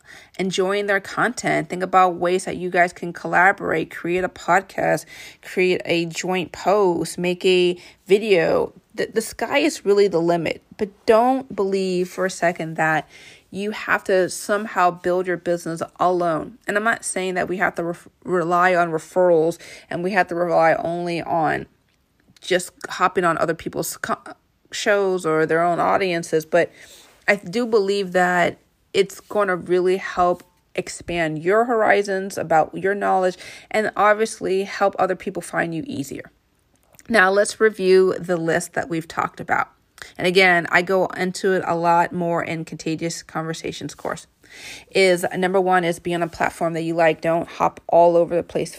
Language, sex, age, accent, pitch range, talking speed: English, female, 30-49, American, 170-195 Hz, 165 wpm